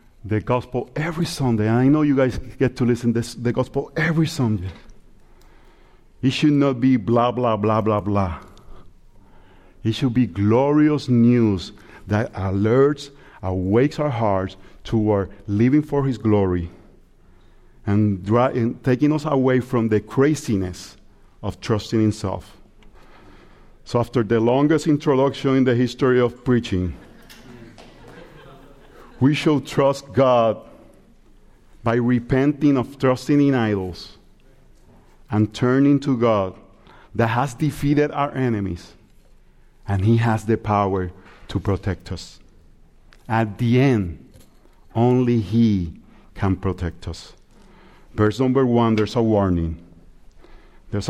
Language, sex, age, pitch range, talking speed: English, male, 50-69, 100-135 Hz, 120 wpm